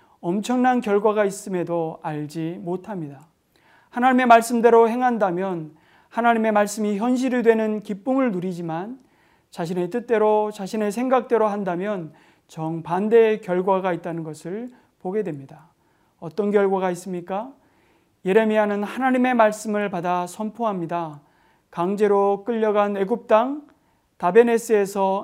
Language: Korean